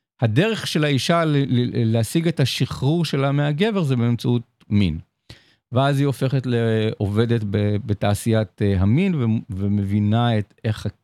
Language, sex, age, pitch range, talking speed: Hebrew, male, 50-69, 105-150 Hz, 130 wpm